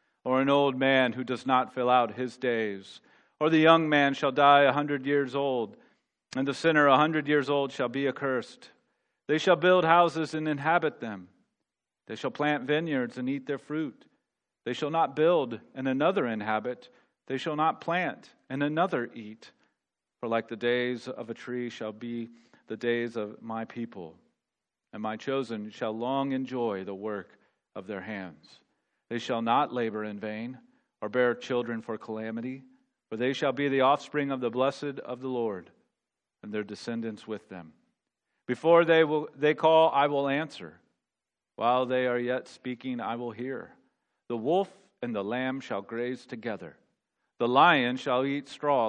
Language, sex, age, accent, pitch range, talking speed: English, male, 40-59, American, 110-140 Hz, 175 wpm